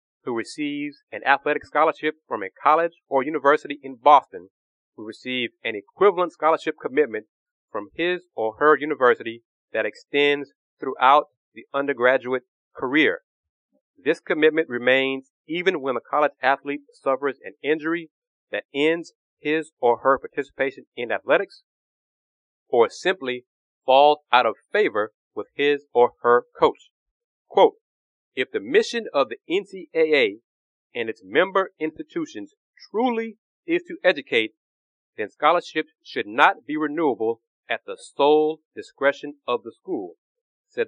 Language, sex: English, male